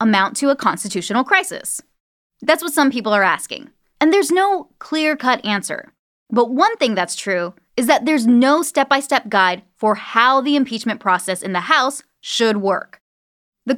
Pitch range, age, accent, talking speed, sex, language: 200-285 Hz, 10-29, American, 165 wpm, female, English